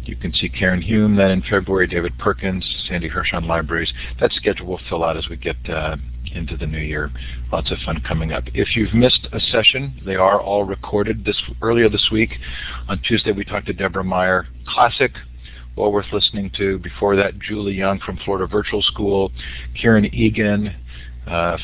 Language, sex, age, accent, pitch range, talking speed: English, male, 50-69, American, 80-100 Hz, 185 wpm